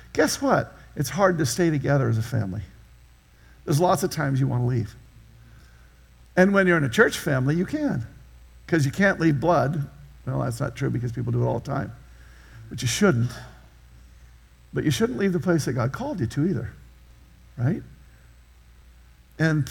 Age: 50-69